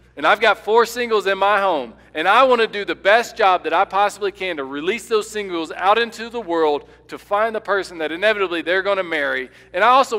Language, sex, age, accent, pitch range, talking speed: English, male, 40-59, American, 155-215 Hz, 240 wpm